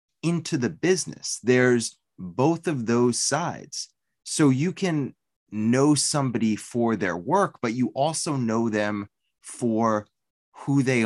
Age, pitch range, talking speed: 20-39, 105-145 Hz, 130 wpm